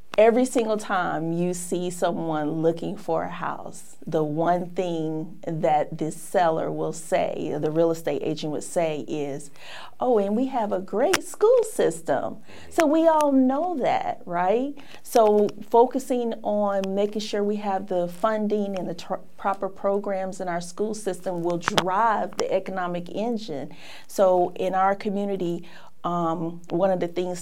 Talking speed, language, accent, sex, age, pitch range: 155 wpm, English, American, female, 40-59, 165-205 Hz